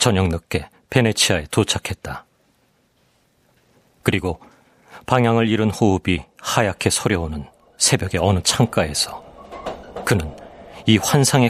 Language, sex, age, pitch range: Korean, male, 40-59, 90-120 Hz